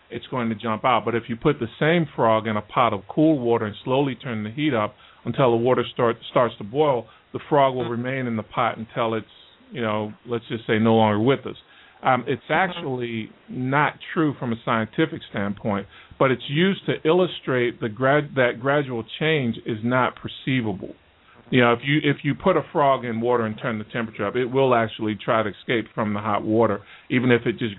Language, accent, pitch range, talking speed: English, American, 110-135 Hz, 220 wpm